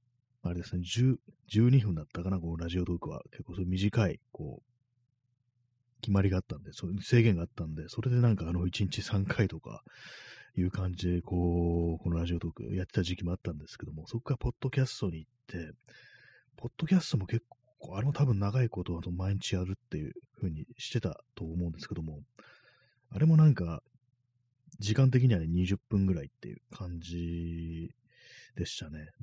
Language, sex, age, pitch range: Japanese, male, 30-49, 85-120 Hz